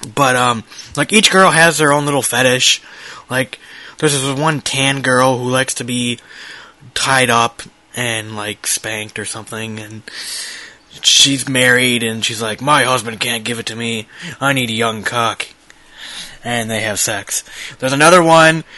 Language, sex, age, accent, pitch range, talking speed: English, male, 20-39, American, 110-130 Hz, 165 wpm